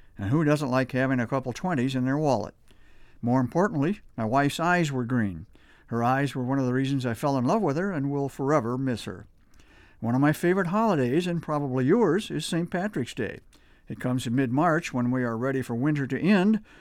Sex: male